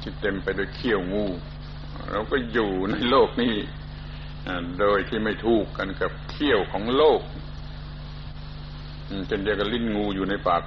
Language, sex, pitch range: Thai, male, 75-110 Hz